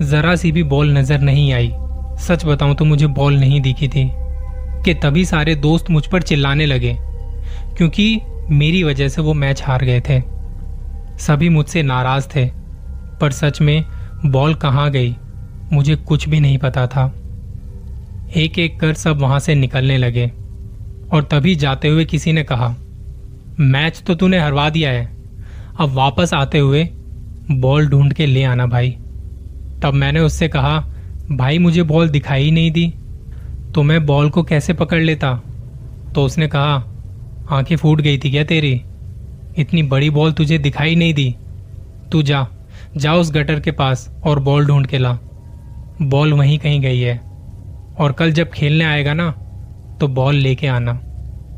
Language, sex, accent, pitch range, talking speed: Hindi, male, native, 120-155 Hz, 160 wpm